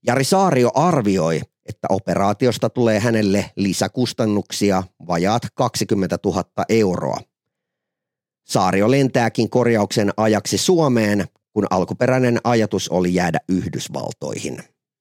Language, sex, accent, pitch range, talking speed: Finnish, male, native, 95-120 Hz, 90 wpm